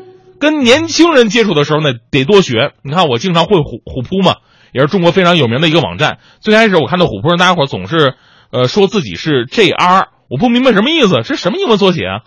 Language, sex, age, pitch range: Chinese, male, 30-49, 145-230 Hz